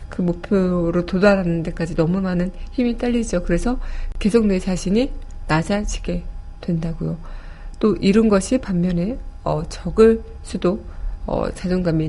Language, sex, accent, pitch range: Korean, female, native, 165-205 Hz